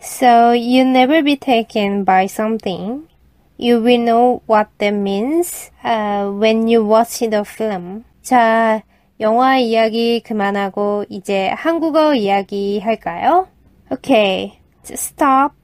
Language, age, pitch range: Korean, 20-39, 215-280 Hz